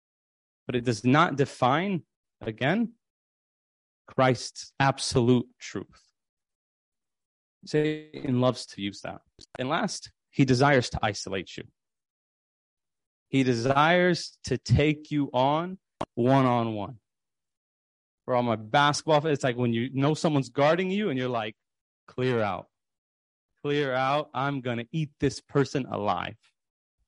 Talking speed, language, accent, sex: 120 wpm, English, American, male